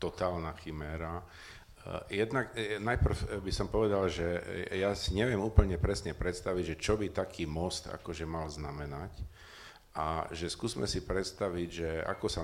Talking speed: 145 wpm